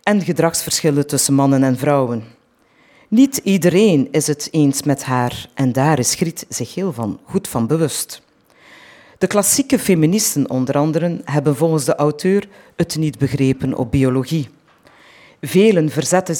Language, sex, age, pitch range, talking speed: Dutch, female, 40-59, 140-180 Hz, 140 wpm